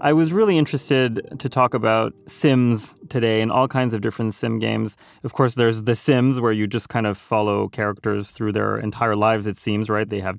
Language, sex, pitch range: English, male, 110-140 Hz